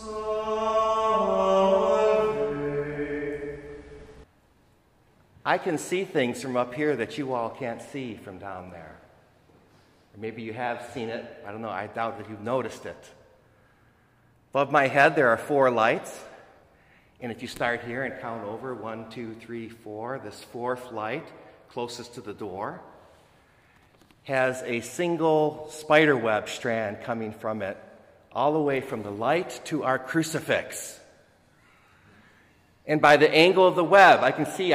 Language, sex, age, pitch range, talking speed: English, male, 50-69, 120-180 Hz, 140 wpm